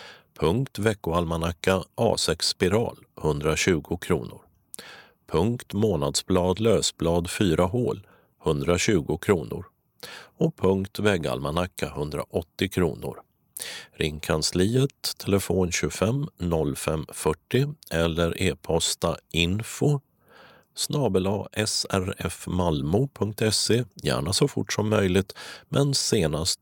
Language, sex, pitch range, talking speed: Swedish, male, 85-110 Hz, 80 wpm